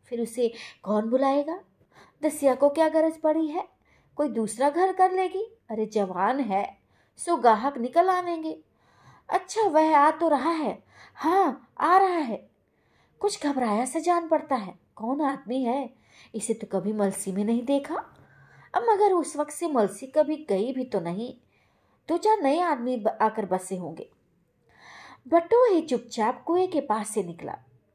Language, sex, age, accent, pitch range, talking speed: Hindi, female, 20-39, native, 210-305 Hz, 160 wpm